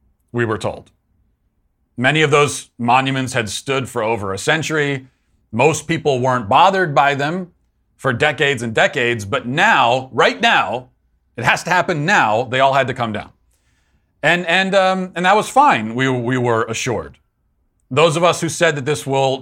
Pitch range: 110-150 Hz